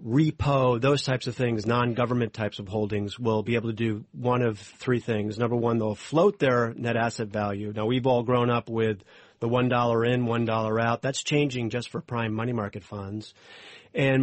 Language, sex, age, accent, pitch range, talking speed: English, male, 40-59, American, 110-130 Hz, 195 wpm